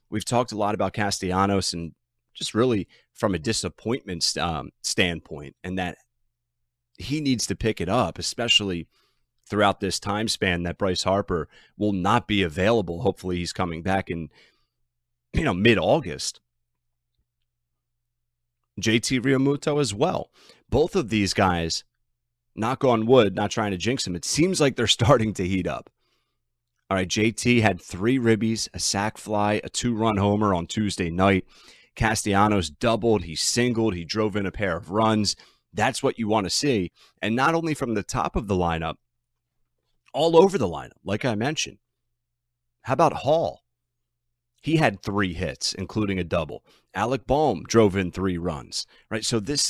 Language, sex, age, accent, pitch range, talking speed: English, male, 30-49, American, 95-120 Hz, 160 wpm